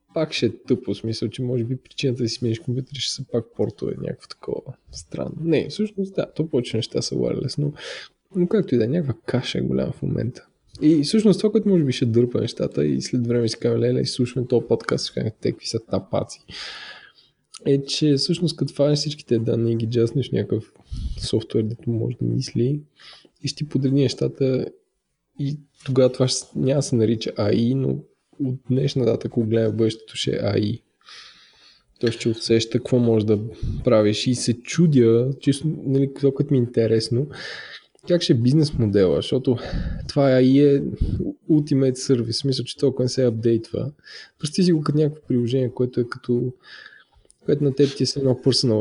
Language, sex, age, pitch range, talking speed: Bulgarian, male, 20-39, 115-145 Hz, 180 wpm